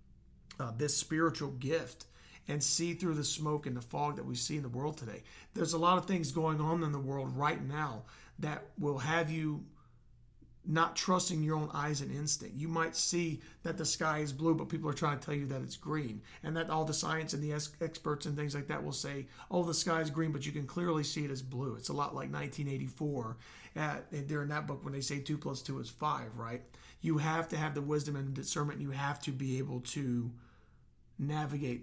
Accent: American